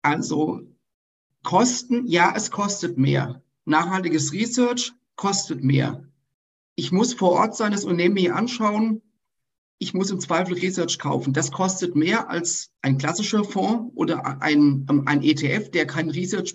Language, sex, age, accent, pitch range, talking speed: German, male, 50-69, German, 155-195 Hz, 140 wpm